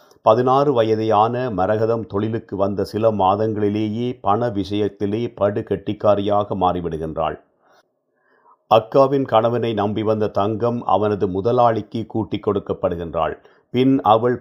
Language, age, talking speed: Tamil, 50-69, 85 wpm